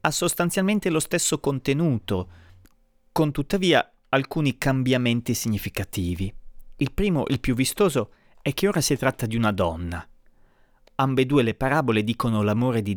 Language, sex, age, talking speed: Italian, male, 30-49, 135 wpm